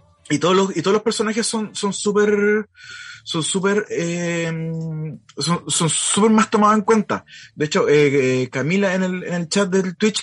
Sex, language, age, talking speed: male, Spanish, 20-39, 190 wpm